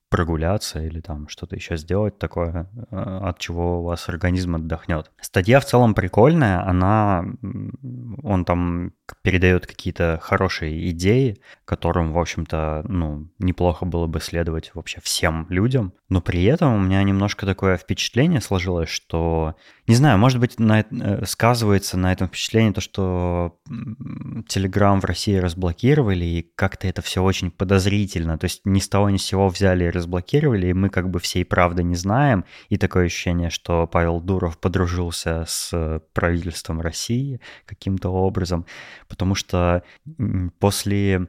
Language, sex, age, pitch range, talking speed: Russian, male, 20-39, 85-100 Hz, 145 wpm